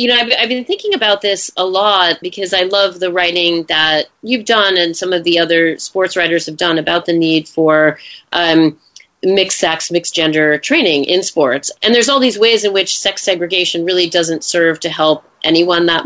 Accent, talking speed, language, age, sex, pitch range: American, 205 wpm, English, 30-49, female, 155-190 Hz